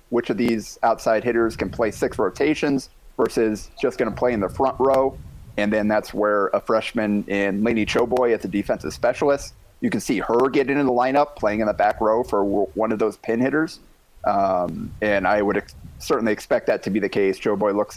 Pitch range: 105-125 Hz